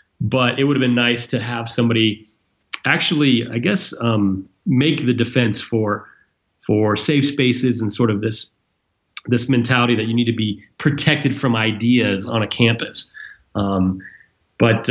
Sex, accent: male, American